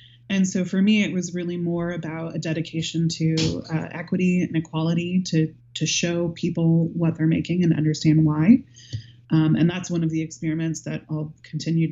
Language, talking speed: English, 180 wpm